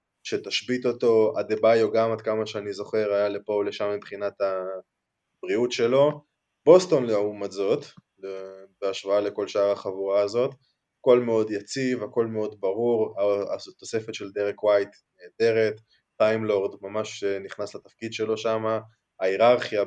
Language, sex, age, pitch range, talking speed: Hebrew, male, 20-39, 100-120 Hz, 125 wpm